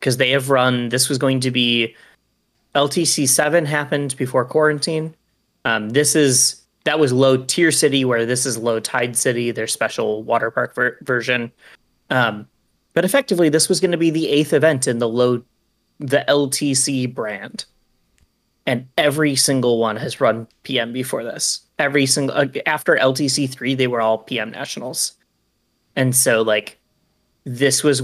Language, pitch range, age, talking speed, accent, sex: English, 120-145 Hz, 30-49, 160 wpm, American, male